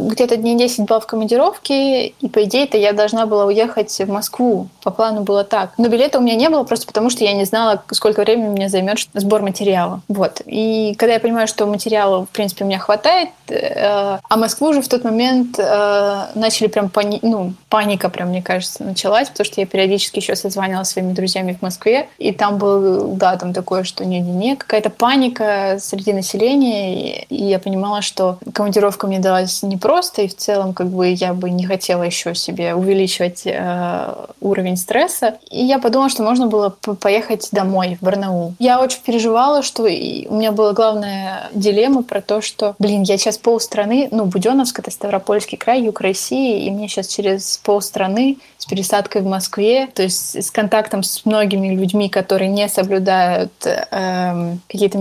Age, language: 20-39, Russian